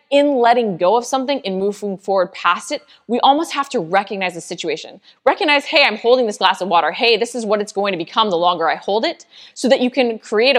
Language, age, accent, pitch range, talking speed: English, 20-39, American, 180-230 Hz, 245 wpm